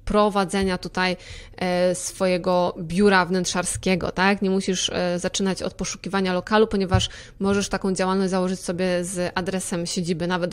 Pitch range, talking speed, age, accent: 185-205 Hz, 125 wpm, 20-39, native